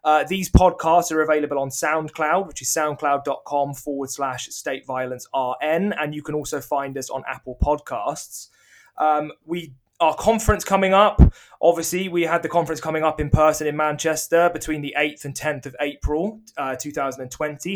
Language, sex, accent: English, male, British